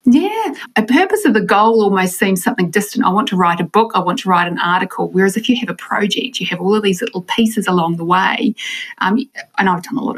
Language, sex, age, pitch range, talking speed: English, female, 30-49, 190-245 Hz, 260 wpm